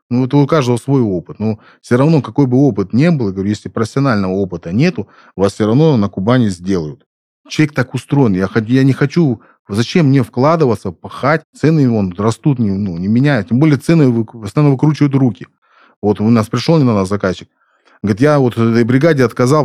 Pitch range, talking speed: 100-135 Hz, 190 wpm